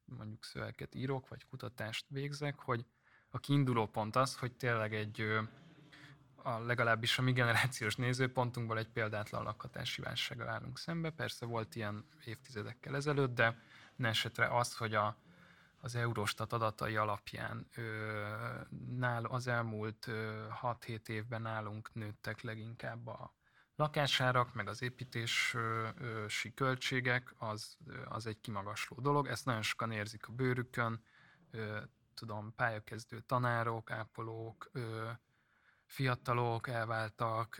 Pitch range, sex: 110-130 Hz, male